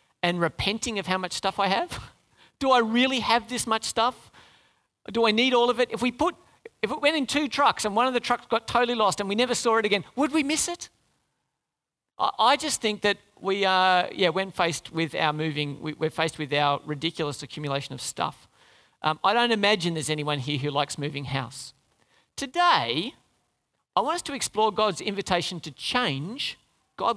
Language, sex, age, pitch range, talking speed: English, male, 40-59, 160-240 Hz, 200 wpm